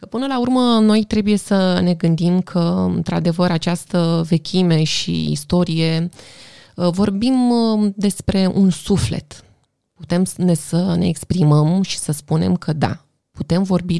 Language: Romanian